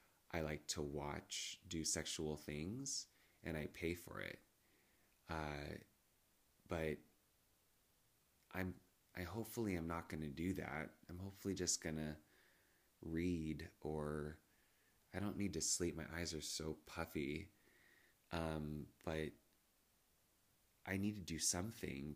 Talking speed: 120 wpm